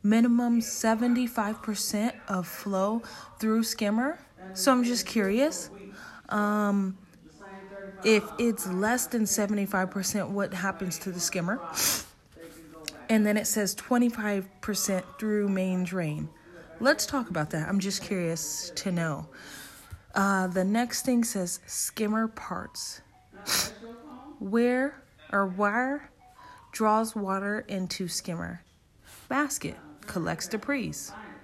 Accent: American